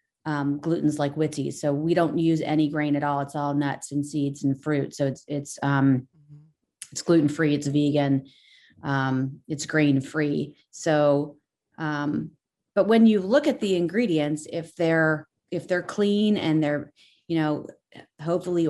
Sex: female